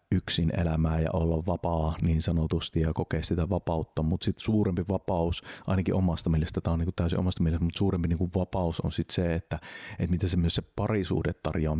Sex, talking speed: male, 200 wpm